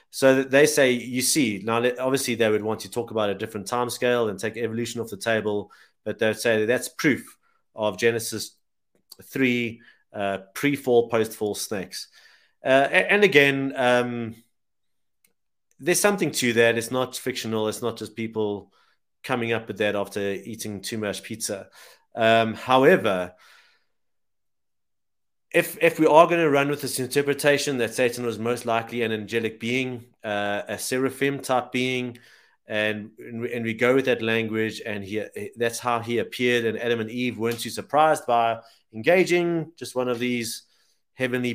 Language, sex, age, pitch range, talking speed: English, male, 30-49, 110-130 Hz, 165 wpm